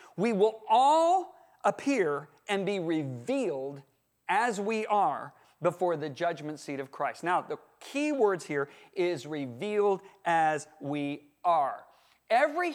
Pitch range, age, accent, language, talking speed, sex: 160-215 Hz, 40-59, American, English, 125 wpm, male